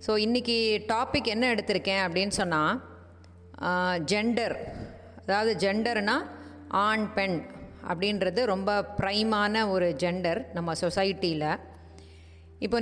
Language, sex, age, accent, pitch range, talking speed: Tamil, female, 30-49, native, 175-225 Hz, 95 wpm